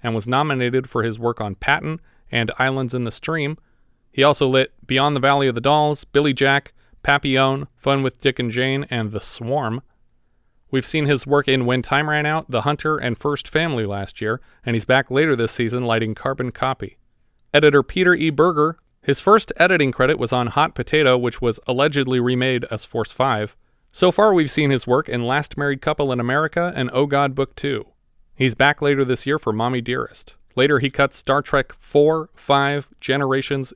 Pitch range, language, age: 120-145 Hz, English, 30-49